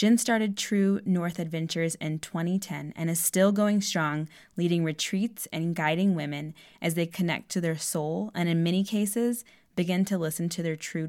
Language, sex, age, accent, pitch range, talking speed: English, female, 10-29, American, 155-195 Hz, 180 wpm